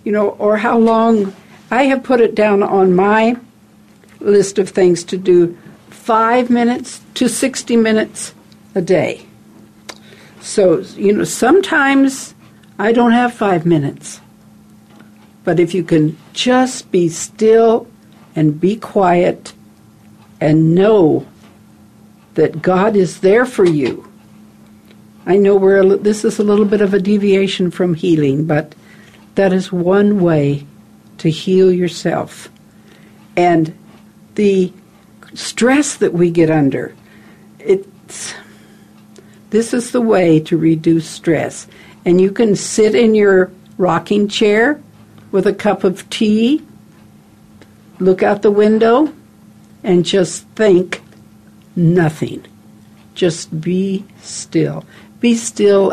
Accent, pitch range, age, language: American, 170-220 Hz, 60-79, English